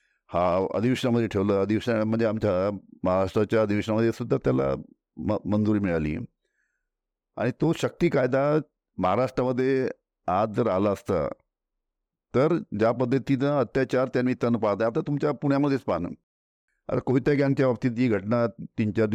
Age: 50-69